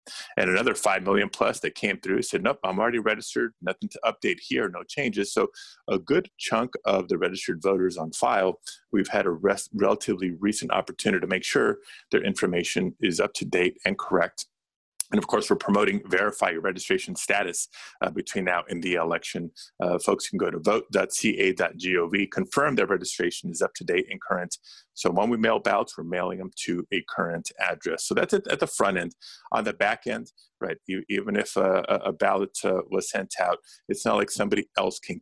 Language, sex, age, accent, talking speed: English, male, 30-49, American, 195 wpm